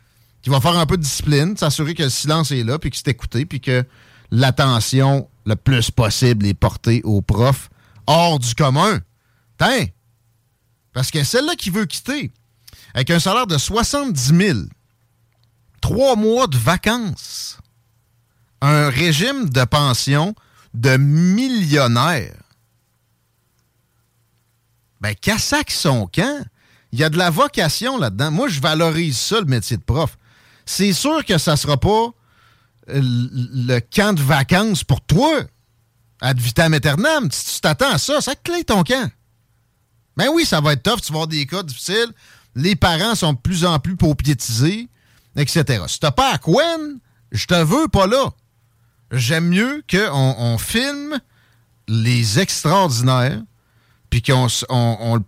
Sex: male